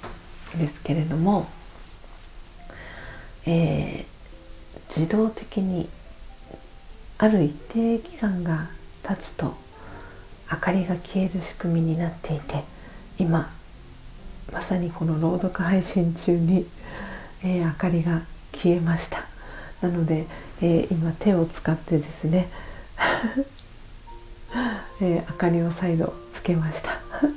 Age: 40-59